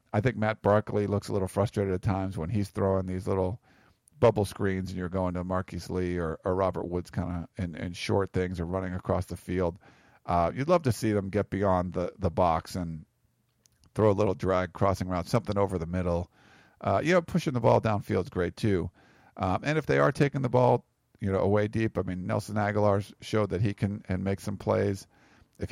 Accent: American